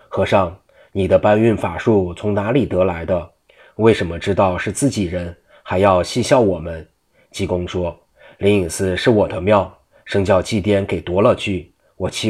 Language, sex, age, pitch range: Chinese, male, 30-49, 90-105 Hz